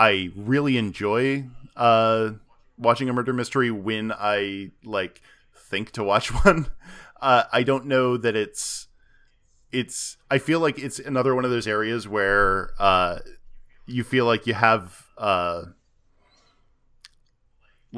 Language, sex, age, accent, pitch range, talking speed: English, male, 10-29, American, 105-130 Hz, 130 wpm